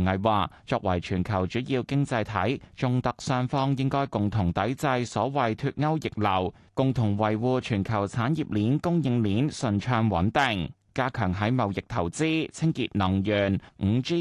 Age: 20-39